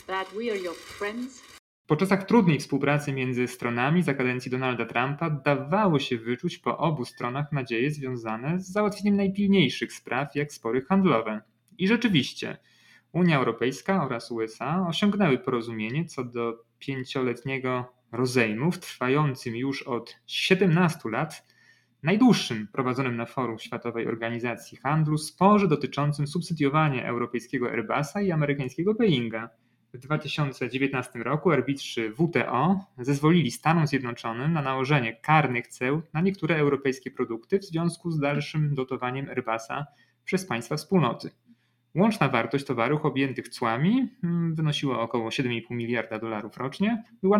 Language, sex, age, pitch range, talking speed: Polish, male, 30-49, 120-170 Hz, 120 wpm